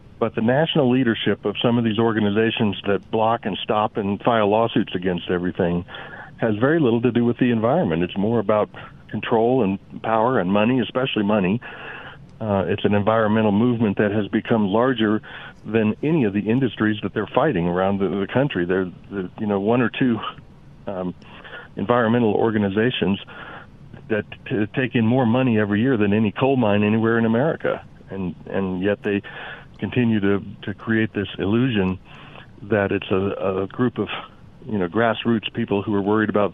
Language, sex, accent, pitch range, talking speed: English, male, American, 100-120 Hz, 175 wpm